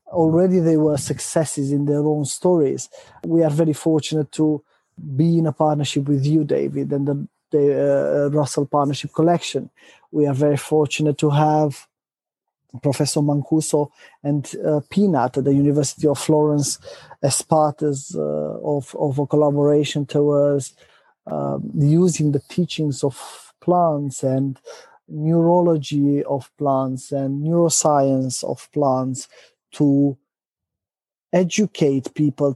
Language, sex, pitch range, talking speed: English, male, 140-155 Hz, 125 wpm